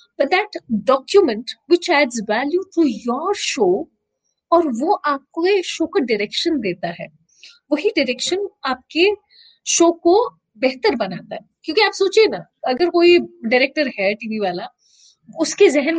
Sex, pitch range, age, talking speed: female, 240-370 Hz, 30-49, 135 wpm